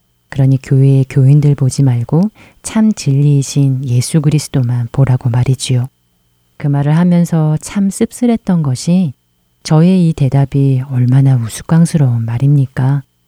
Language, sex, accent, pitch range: Korean, female, native, 125-165 Hz